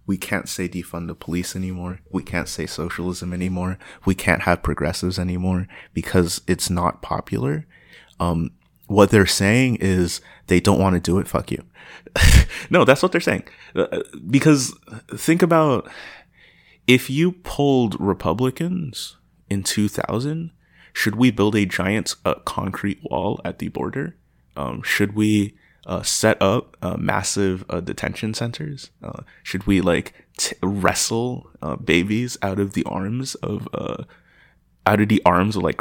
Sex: male